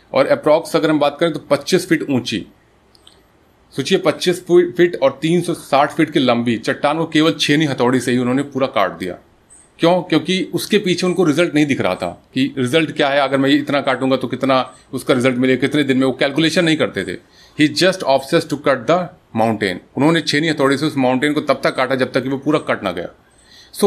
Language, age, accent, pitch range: Hindi, 30-49, native, 130-160 Hz